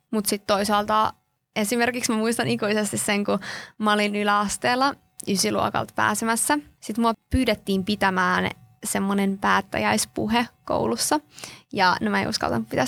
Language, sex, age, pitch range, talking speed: Finnish, female, 20-39, 195-235 Hz, 115 wpm